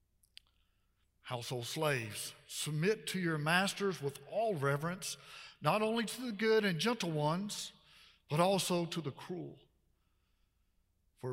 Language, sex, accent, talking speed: English, male, American, 120 wpm